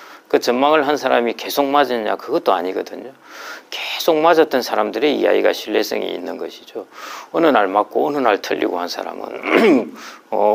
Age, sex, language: 40-59, male, Korean